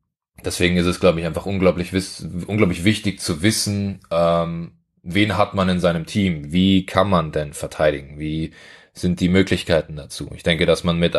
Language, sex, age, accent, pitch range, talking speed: German, male, 20-39, German, 85-95 Hz, 180 wpm